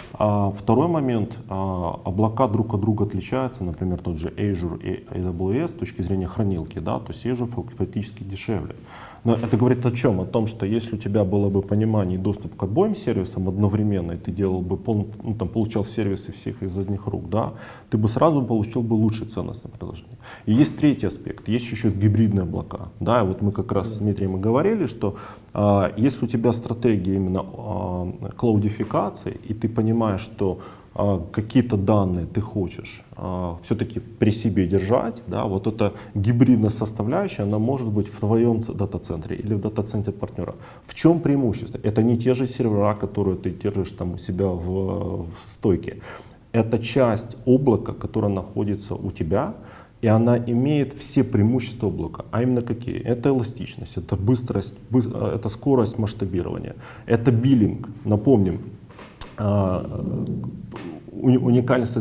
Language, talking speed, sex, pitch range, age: Ukrainian, 155 wpm, male, 100-120 Hz, 30-49